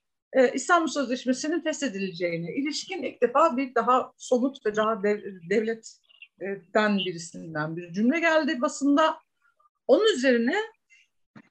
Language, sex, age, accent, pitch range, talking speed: Turkish, female, 60-79, native, 210-300 Hz, 100 wpm